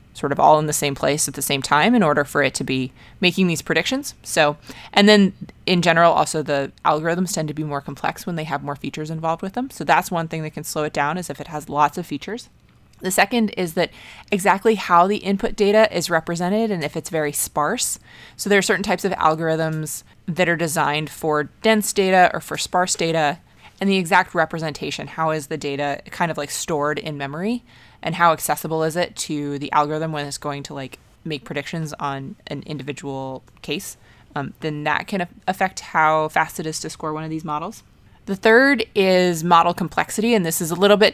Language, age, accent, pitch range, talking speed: English, 20-39, American, 150-190 Hz, 220 wpm